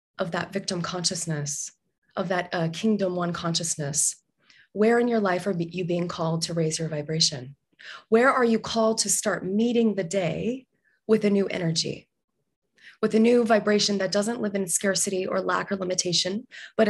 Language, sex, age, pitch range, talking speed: English, female, 20-39, 170-215 Hz, 175 wpm